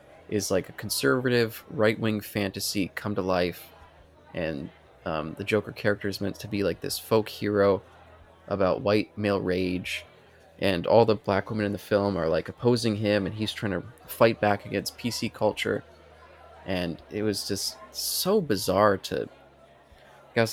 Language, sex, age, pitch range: English, male, 20-39, 95-115 Hz